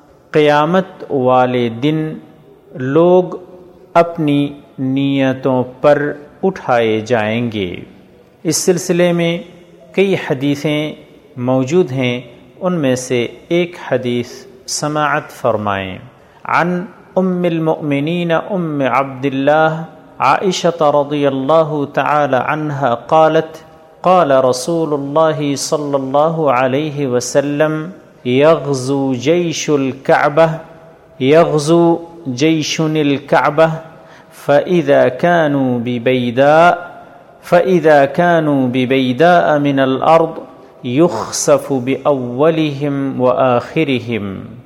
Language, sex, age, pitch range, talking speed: Urdu, male, 50-69, 130-165 Hz, 80 wpm